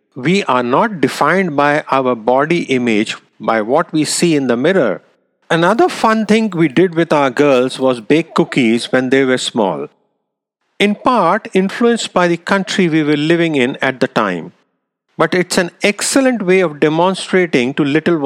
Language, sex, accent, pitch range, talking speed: English, male, Indian, 130-180 Hz, 170 wpm